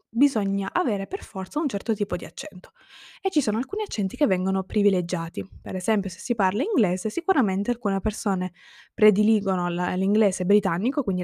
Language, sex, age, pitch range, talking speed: Italian, female, 20-39, 195-230 Hz, 160 wpm